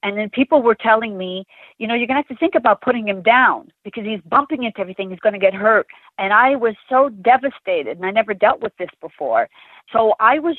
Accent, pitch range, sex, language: American, 190-270 Hz, female, English